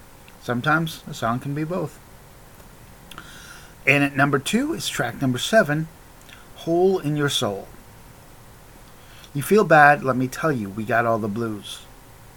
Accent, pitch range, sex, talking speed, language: American, 115-145 Hz, male, 145 wpm, English